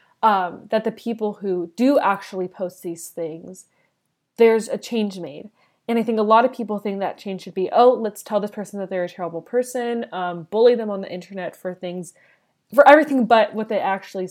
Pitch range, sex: 185-225 Hz, female